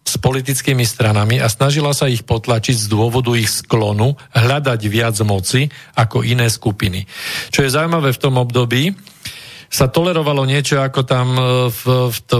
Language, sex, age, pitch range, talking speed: Slovak, male, 40-59, 115-135 Hz, 145 wpm